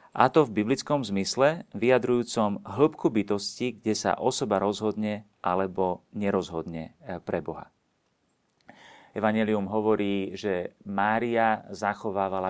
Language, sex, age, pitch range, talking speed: Slovak, male, 40-59, 90-105 Hz, 100 wpm